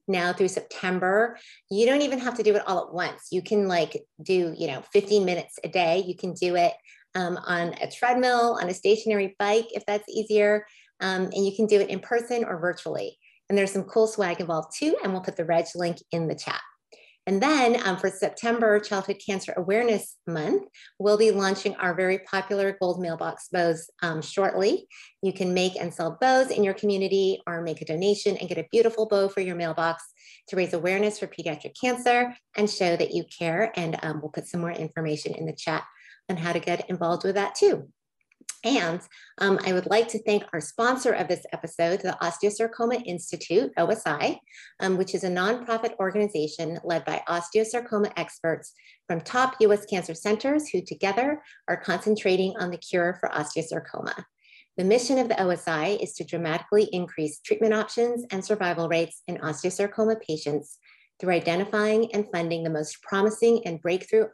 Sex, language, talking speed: female, English, 185 wpm